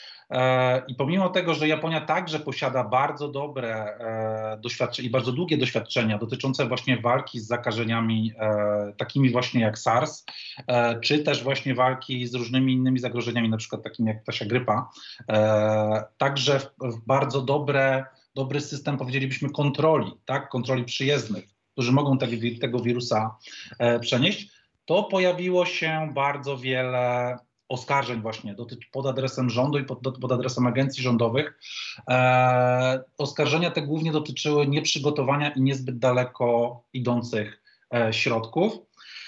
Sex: male